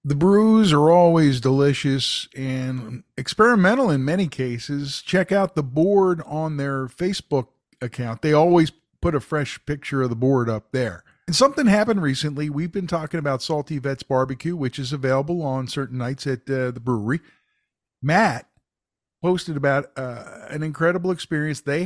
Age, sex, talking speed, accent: 50-69, male, 160 wpm, American